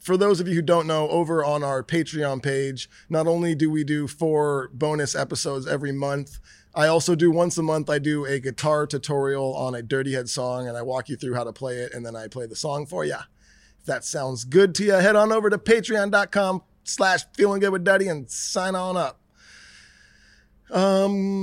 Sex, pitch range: male, 135-180 Hz